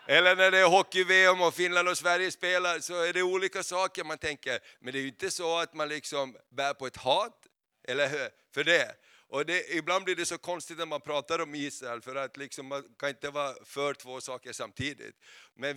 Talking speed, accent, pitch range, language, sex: 220 wpm, native, 135-160 Hz, Swedish, male